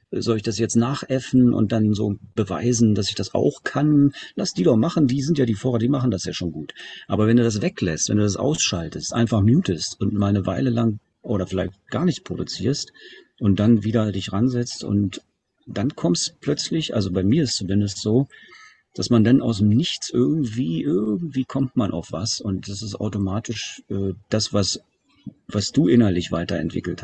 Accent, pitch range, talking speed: German, 95-120 Hz, 195 wpm